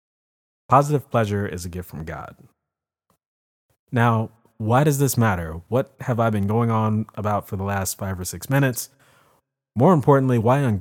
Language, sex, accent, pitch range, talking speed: English, male, American, 100-120 Hz, 165 wpm